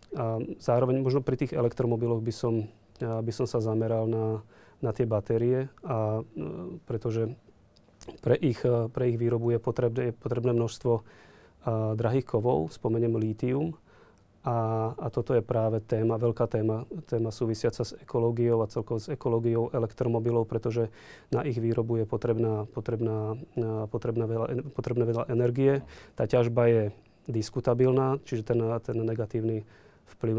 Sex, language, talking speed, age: male, Slovak, 135 wpm, 30-49